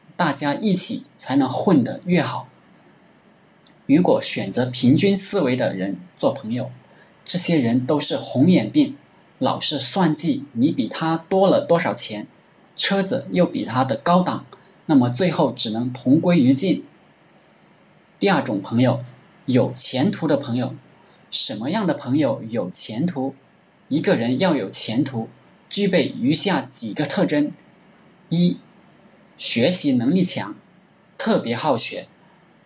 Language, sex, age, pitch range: Chinese, male, 20-39, 140-200 Hz